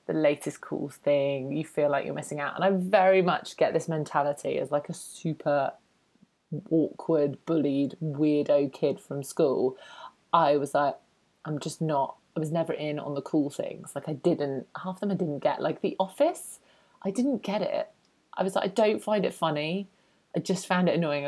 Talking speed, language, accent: 195 wpm, English, British